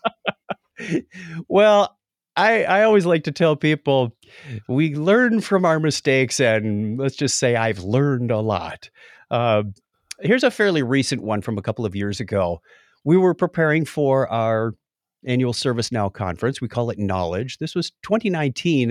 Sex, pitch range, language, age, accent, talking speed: male, 110-170 Hz, English, 50-69, American, 150 wpm